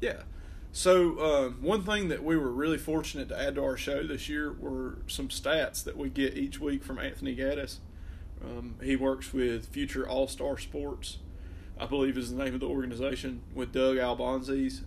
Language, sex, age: English, male, 30-49